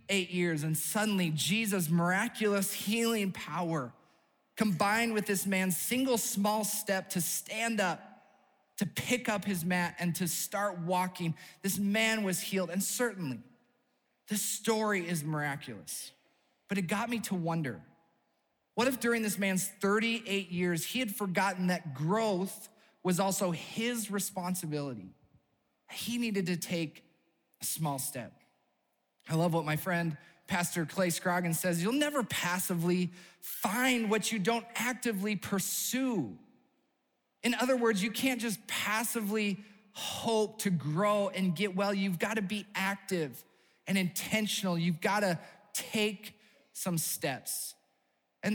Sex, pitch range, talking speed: male, 180-220 Hz, 135 wpm